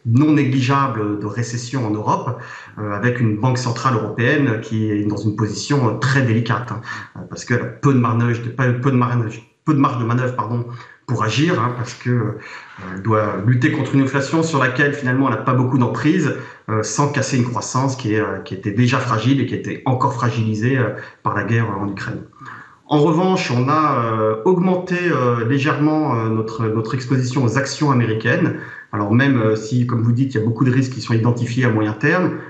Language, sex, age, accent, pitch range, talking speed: French, male, 40-59, French, 110-140 Hz, 195 wpm